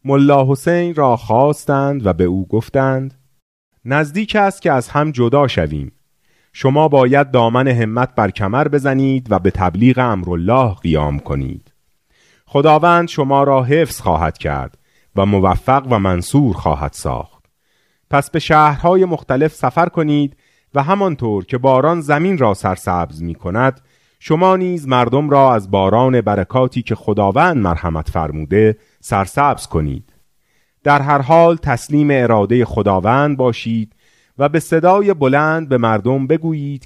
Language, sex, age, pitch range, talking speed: Persian, male, 30-49, 100-145 Hz, 135 wpm